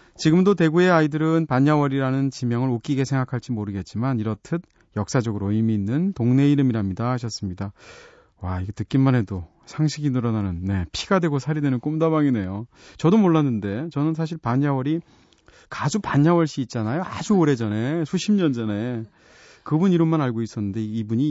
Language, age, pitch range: Korean, 30-49, 115-160 Hz